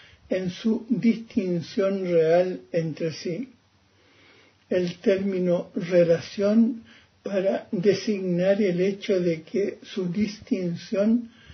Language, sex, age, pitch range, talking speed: Spanish, male, 60-79, 170-200 Hz, 90 wpm